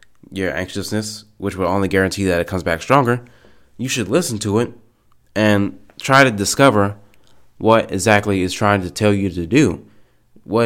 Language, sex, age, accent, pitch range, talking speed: English, male, 20-39, American, 95-115 Hz, 170 wpm